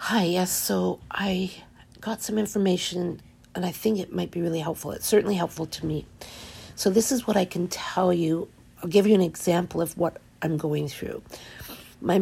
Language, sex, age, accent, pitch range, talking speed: English, female, 50-69, American, 175-215 Hz, 190 wpm